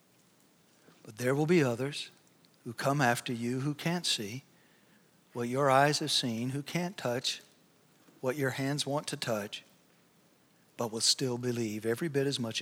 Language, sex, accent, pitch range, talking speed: English, male, American, 120-150 Hz, 155 wpm